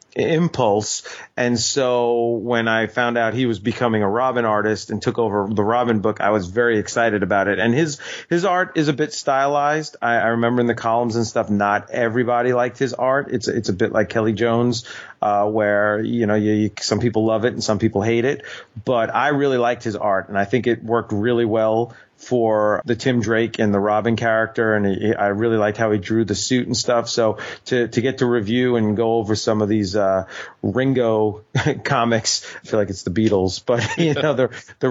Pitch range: 110-125 Hz